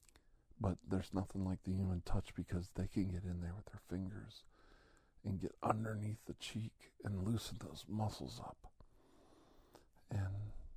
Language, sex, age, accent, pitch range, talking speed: English, male, 50-69, American, 85-100 Hz, 150 wpm